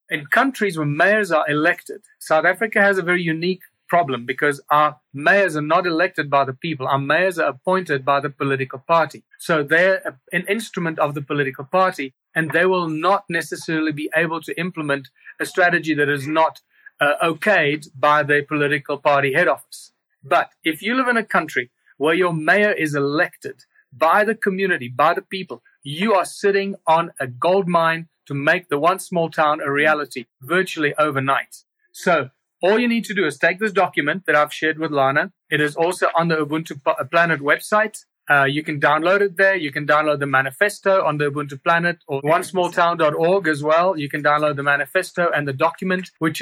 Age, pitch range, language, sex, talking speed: 40-59, 150-185 Hz, English, male, 190 wpm